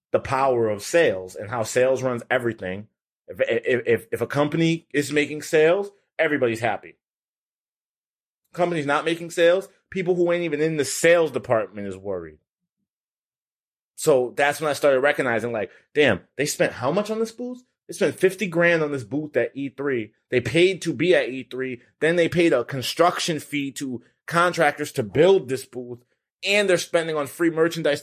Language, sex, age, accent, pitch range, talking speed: English, male, 30-49, American, 125-165 Hz, 175 wpm